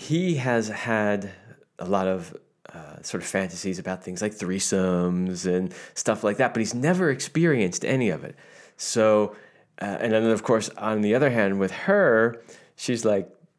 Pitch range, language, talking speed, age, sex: 95-120 Hz, English, 170 wpm, 20-39, male